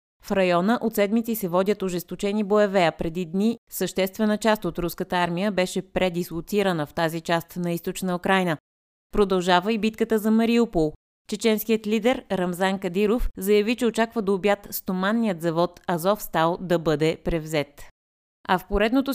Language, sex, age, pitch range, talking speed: Bulgarian, female, 20-39, 175-215 Hz, 145 wpm